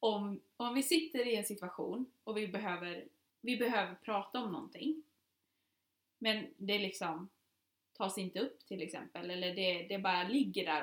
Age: 20-39